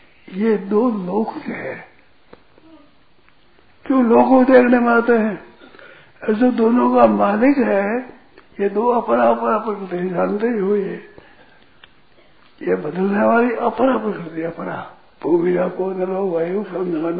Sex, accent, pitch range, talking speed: male, native, 175-230 Hz, 110 wpm